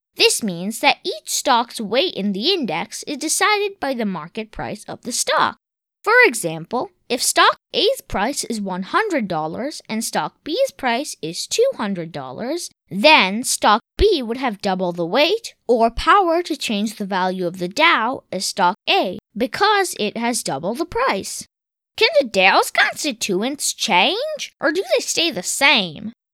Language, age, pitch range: English, 20-39, 205-335 Hz